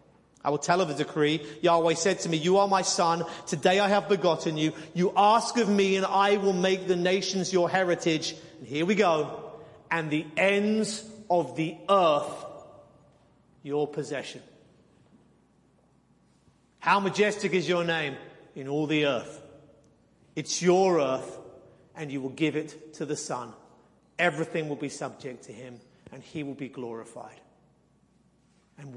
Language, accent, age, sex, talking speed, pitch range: English, British, 40-59, male, 155 wpm, 145-185 Hz